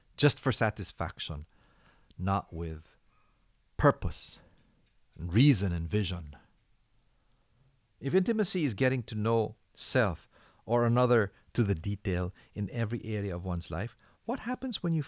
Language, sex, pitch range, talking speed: English, male, 100-135 Hz, 125 wpm